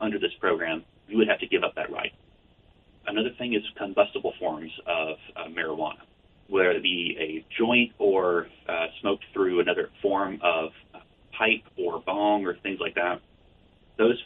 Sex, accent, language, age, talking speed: male, American, English, 30-49, 165 wpm